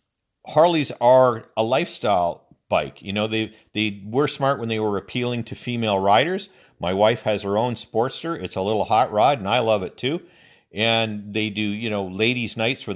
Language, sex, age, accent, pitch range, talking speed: English, male, 50-69, American, 105-145 Hz, 195 wpm